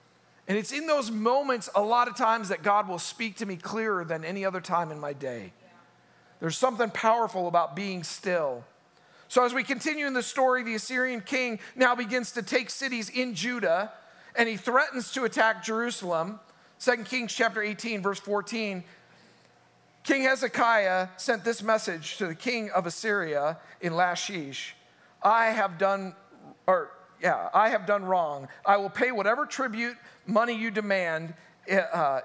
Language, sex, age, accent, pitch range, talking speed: English, male, 50-69, American, 175-230 Hz, 165 wpm